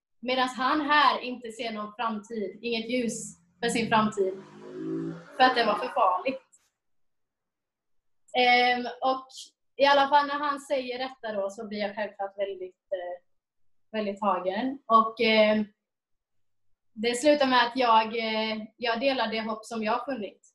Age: 30-49